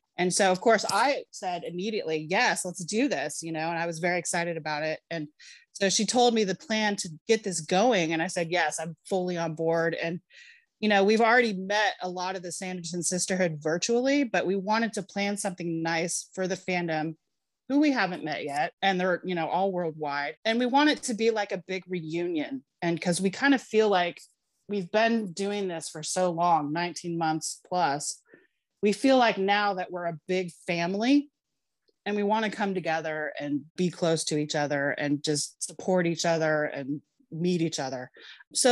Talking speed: 205 wpm